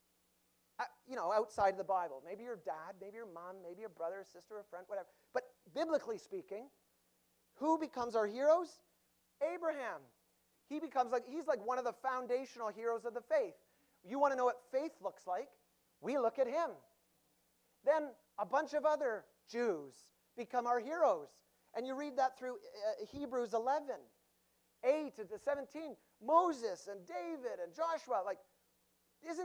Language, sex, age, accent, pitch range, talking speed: English, male, 40-59, American, 215-300 Hz, 165 wpm